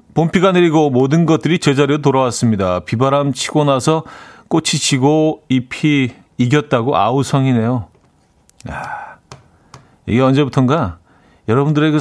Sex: male